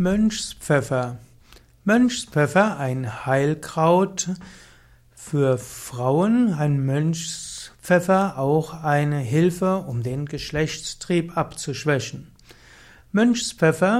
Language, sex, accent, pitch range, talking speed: German, male, German, 145-180 Hz, 70 wpm